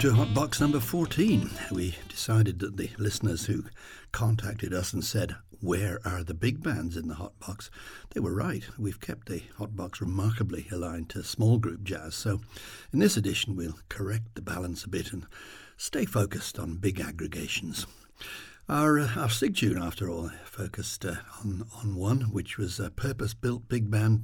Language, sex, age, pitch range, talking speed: English, male, 60-79, 95-115 Hz, 170 wpm